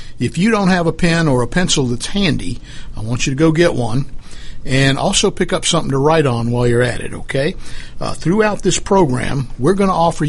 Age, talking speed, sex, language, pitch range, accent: 60-79, 225 wpm, male, English, 130-170 Hz, American